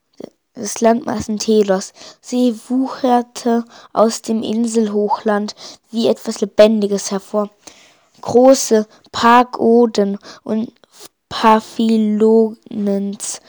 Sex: female